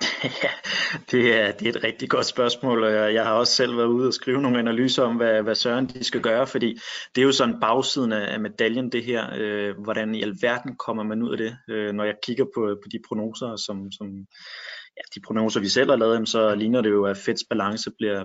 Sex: male